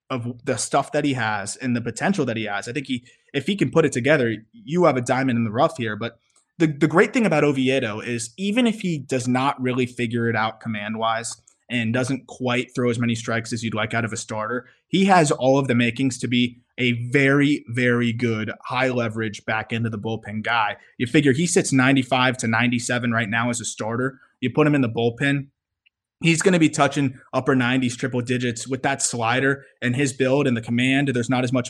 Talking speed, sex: 230 wpm, male